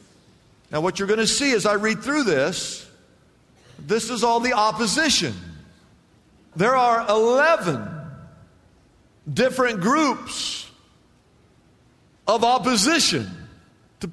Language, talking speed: English, 100 wpm